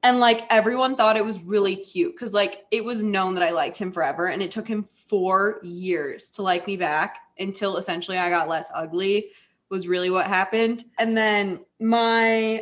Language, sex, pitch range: English, female, 185-225 Hz